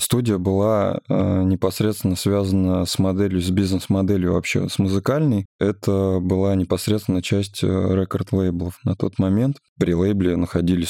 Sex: male